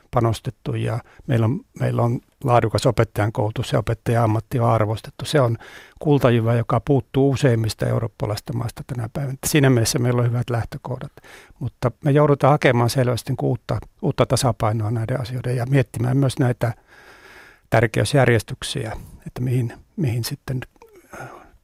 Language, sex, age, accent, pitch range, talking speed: Finnish, male, 60-79, native, 115-135 Hz, 135 wpm